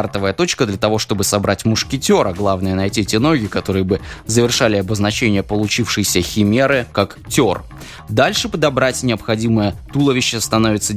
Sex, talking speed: male, 130 wpm